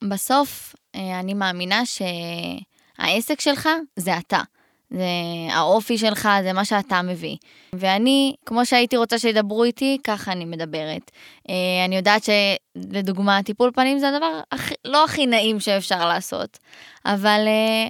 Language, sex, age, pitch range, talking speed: Hebrew, female, 20-39, 195-250 Hz, 125 wpm